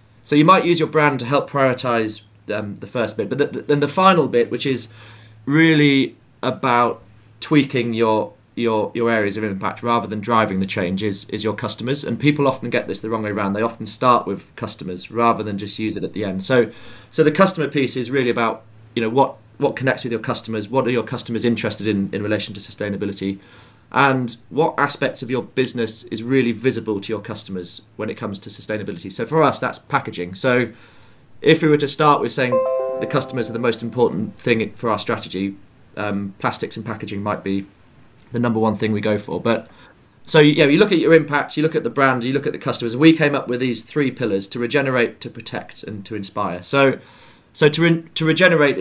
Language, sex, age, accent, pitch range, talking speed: English, male, 30-49, British, 110-135 Hz, 220 wpm